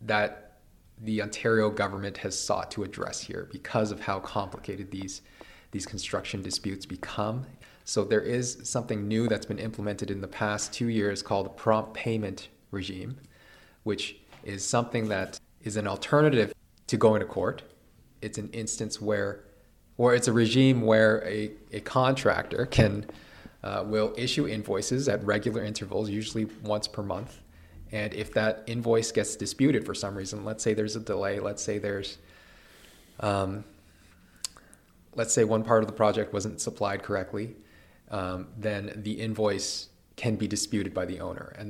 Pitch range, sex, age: 100-110 Hz, male, 20-39